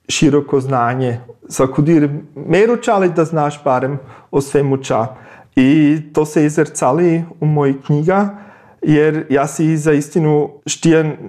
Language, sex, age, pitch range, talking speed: Croatian, male, 40-59, 140-165 Hz, 135 wpm